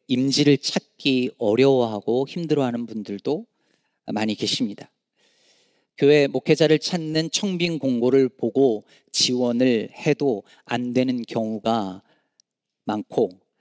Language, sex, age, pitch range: Korean, male, 40-59, 120-155 Hz